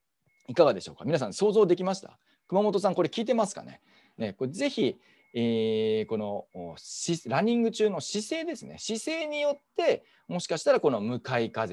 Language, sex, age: Japanese, male, 40-59